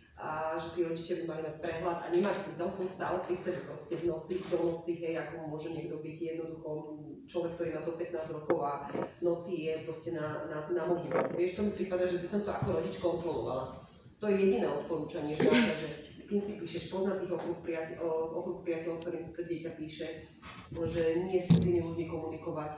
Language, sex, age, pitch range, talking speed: Slovak, female, 30-49, 160-180 Hz, 205 wpm